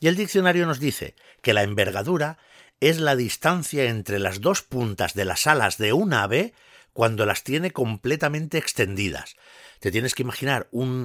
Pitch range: 100-135 Hz